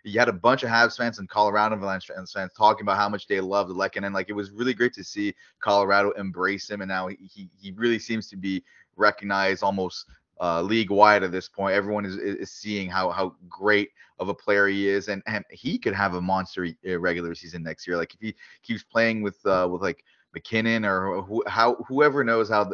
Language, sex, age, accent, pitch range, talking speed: English, male, 20-39, Canadian, 95-110 Hz, 230 wpm